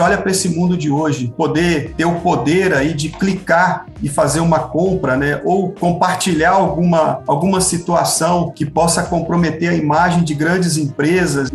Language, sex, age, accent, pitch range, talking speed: Portuguese, male, 40-59, Brazilian, 155-190 Hz, 160 wpm